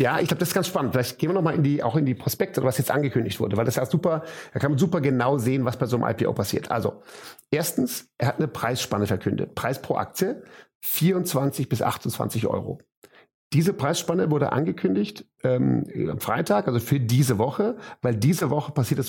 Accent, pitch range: German, 120-160 Hz